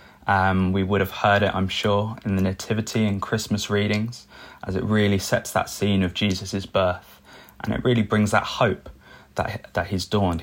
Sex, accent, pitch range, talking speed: male, British, 90-105 Hz, 190 wpm